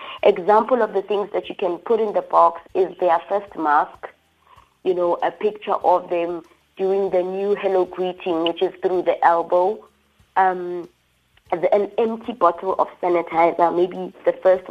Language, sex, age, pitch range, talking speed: English, female, 30-49, 180-210 Hz, 165 wpm